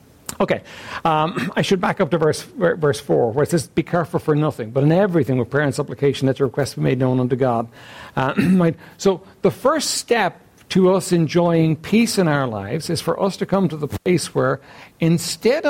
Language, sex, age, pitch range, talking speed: English, male, 60-79, 155-215 Hz, 205 wpm